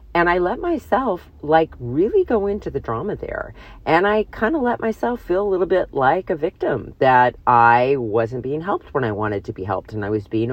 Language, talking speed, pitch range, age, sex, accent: English, 220 wpm, 115-165 Hz, 40-59, female, American